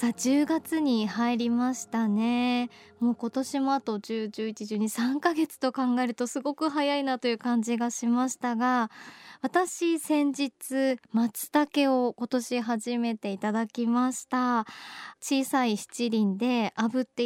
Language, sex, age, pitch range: Japanese, male, 20-39, 230-280 Hz